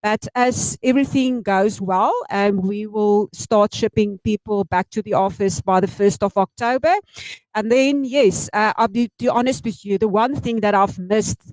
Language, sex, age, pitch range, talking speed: English, female, 50-69, 195-240 Hz, 185 wpm